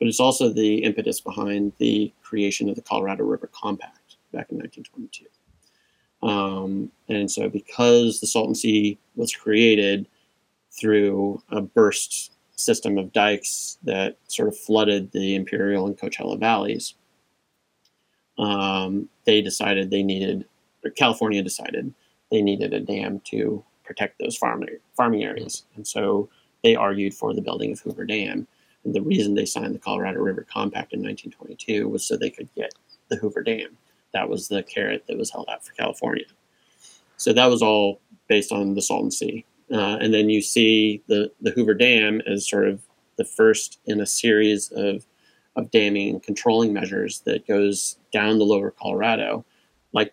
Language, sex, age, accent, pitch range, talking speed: English, male, 30-49, American, 100-110 Hz, 160 wpm